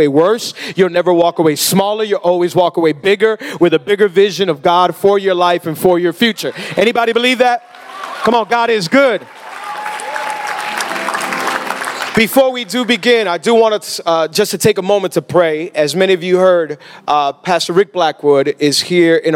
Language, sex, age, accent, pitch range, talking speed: English, male, 40-59, American, 160-195 Hz, 185 wpm